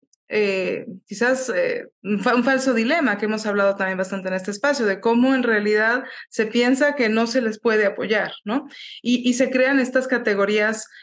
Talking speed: 180 wpm